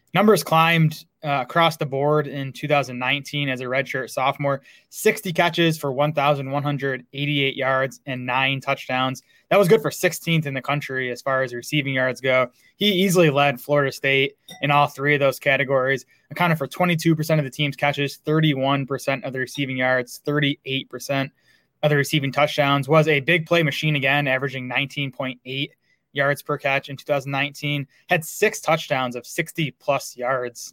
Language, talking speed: English, 160 wpm